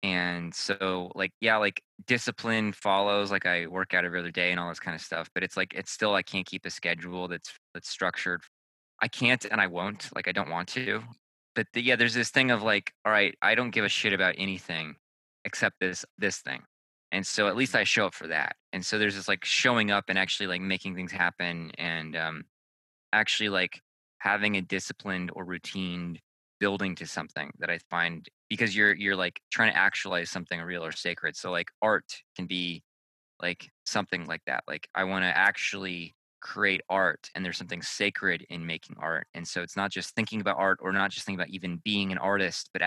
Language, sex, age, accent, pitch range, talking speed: English, male, 20-39, American, 85-100 Hz, 215 wpm